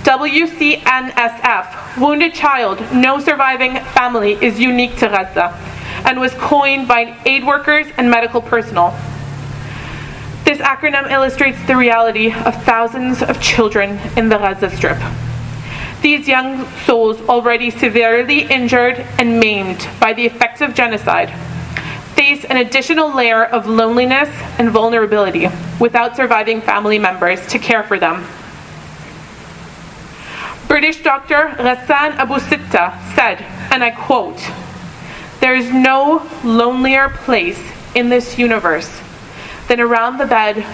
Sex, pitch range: female, 210-265 Hz